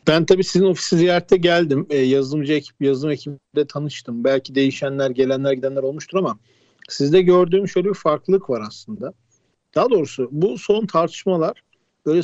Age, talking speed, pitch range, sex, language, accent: 50-69, 145 wpm, 140-185 Hz, male, Turkish, native